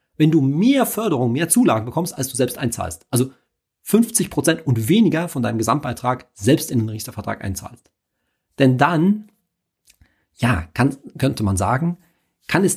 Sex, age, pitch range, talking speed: male, 40-59, 105-145 Hz, 150 wpm